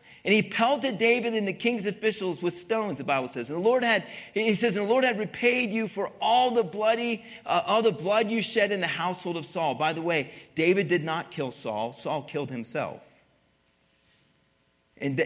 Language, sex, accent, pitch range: English, male, American, 135-185 Hz